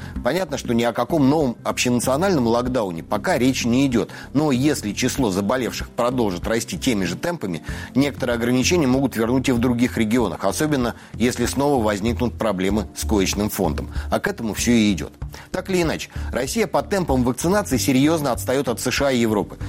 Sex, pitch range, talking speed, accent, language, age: male, 105-140 Hz, 170 wpm, native, Russian, 30-49